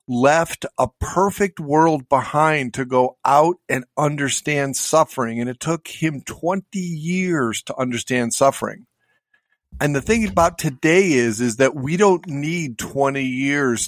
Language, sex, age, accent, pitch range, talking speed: English, male, 50-69, American, 125-170 Hz, 145 wpm